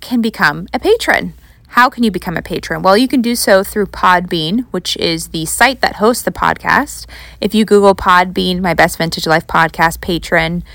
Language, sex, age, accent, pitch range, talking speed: English, female, 20-39, American, 160-205 Hz, 195 wpm